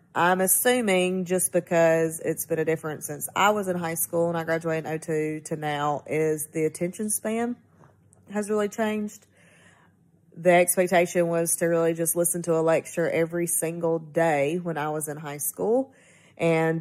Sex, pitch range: female, 160-185 Hz